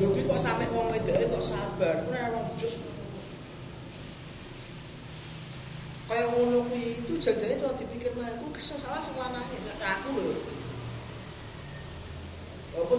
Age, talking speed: 20-39, 115 wpm